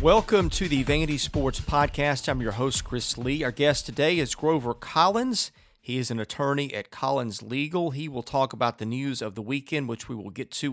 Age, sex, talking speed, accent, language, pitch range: 40-59, male, 215 wpm, American, English, 115-150 Hz